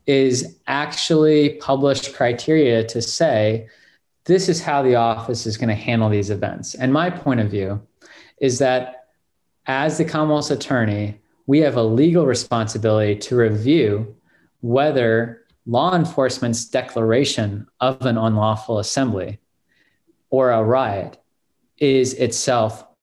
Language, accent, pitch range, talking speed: English, American, 115-135 Hz, 120 wpm